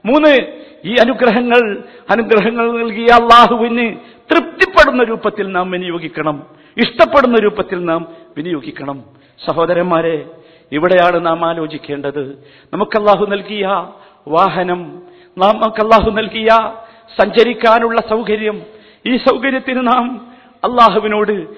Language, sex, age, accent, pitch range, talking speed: Malayalam, male, 50-69, native, 195-240 Hz, 85 wpm